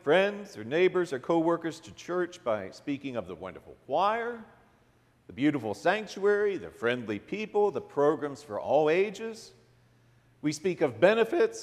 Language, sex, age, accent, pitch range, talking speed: English, male, 50-69, American, 135-220 Hz, 145 wpm